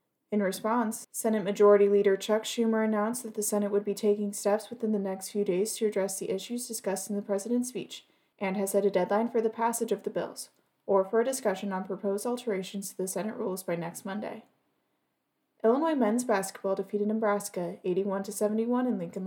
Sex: female